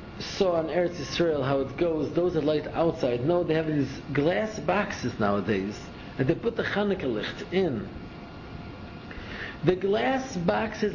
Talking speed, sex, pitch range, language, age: 155 wpm, male, 140-205 Hz, English, 50-69